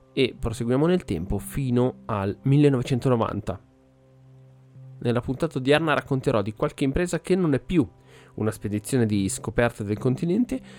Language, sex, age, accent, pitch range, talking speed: Italian, male, 20-39, native, 110-140 Hz, 140 wpm